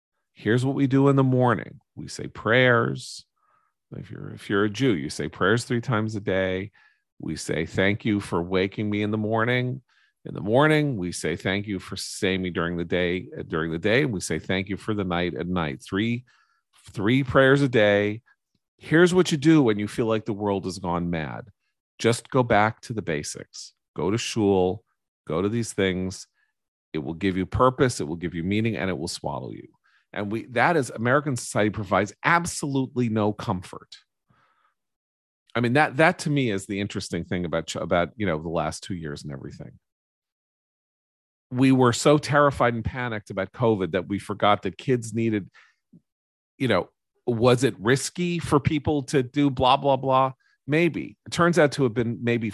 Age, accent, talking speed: 40-59, American, 190 wpm